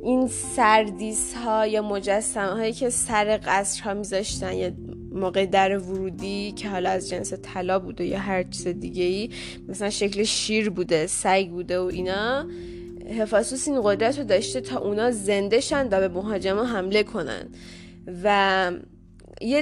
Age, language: 10-29, Persian